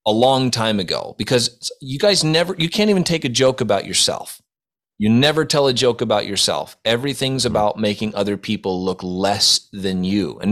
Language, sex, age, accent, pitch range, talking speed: English, male, 30-49, American, 100-135 Hz, 190 wpm